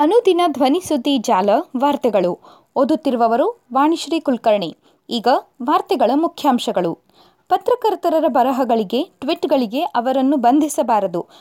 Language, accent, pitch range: Kannada, native, 255-350 Hz